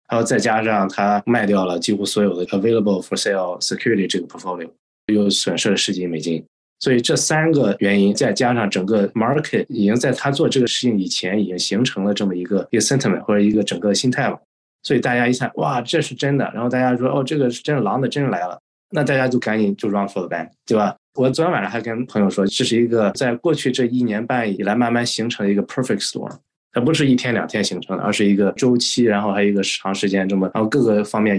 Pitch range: 95-120 Hz